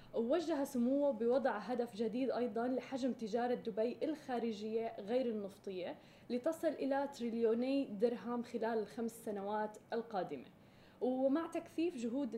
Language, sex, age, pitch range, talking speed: Arabic, female, 10-29, 225-265 Hz, 110 wpm